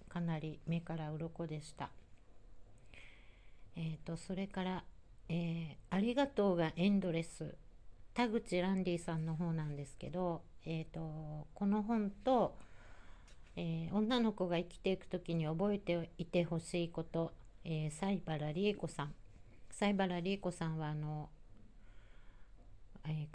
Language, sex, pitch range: Japanese, female, 160-195 Hz